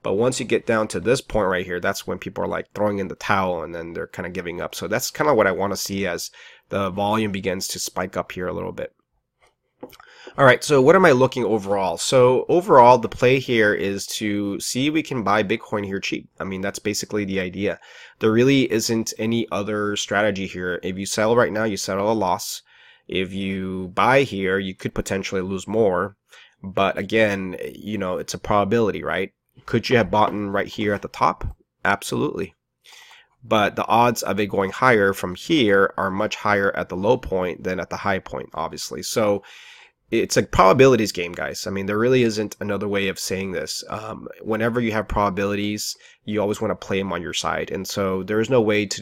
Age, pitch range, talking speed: 20-39, 95-110 Hz, 215 wpm